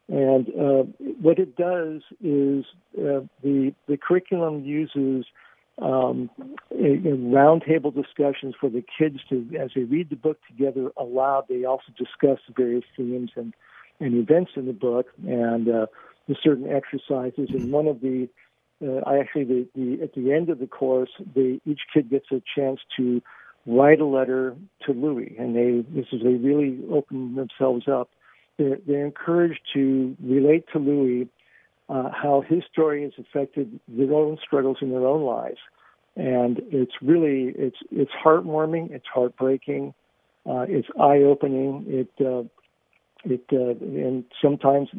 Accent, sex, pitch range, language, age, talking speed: American, male, 130-145 Hz, English, 50-69, 150 wpm